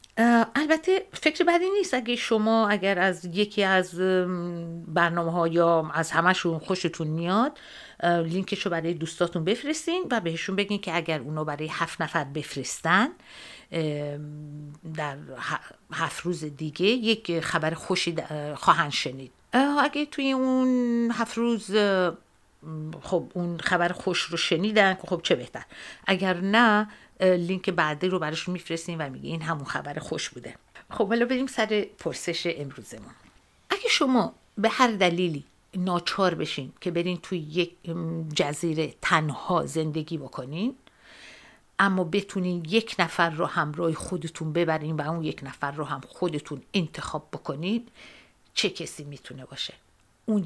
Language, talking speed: Persian, 135 wpm